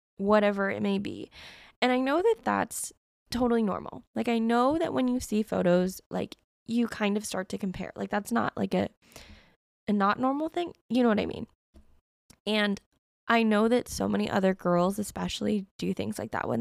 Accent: American